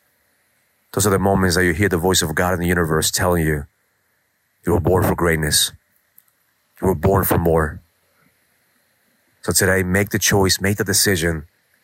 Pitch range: 85-110 Hz